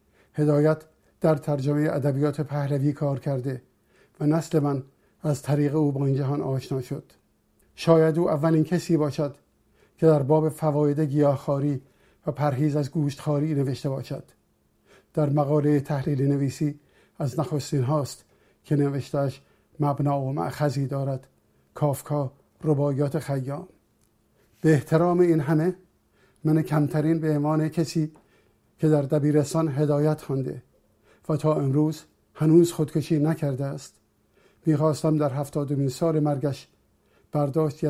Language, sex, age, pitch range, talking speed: Persian, male, 50-69, 140-155 Hz, 120 wpm